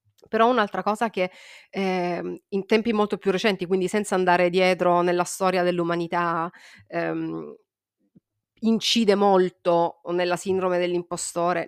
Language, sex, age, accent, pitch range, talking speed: Italian, female, 30-49, native, 175-215 Hz, 115 wpm